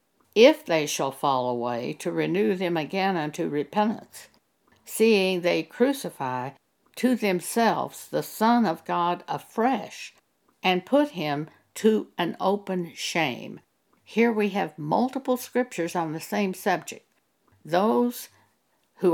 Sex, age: female, 60-79